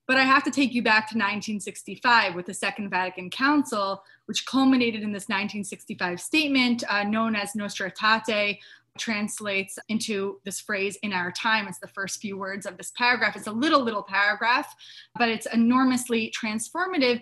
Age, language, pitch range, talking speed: 20-39, English, 205-260 Hz, 170 wpm